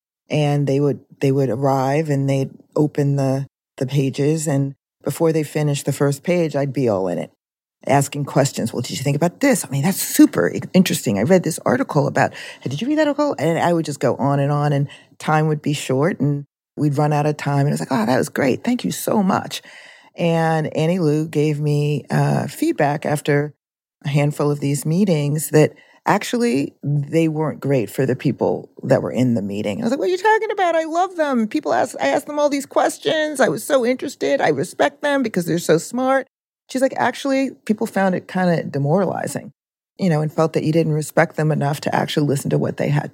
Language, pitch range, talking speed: English, 140-185 Hz, 225 wpm